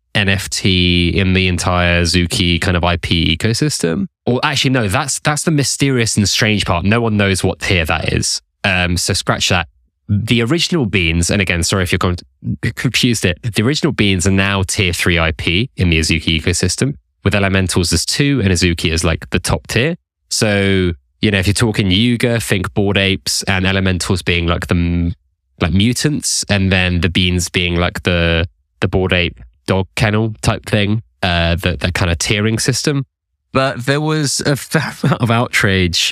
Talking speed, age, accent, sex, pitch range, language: 180 wpm, 20-39, British, male, 85-110 Hz, English